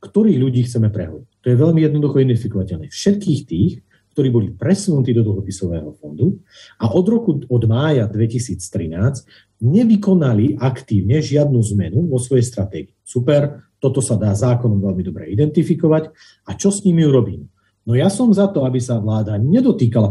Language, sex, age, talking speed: Slovak, male, 40-59, 155 wpm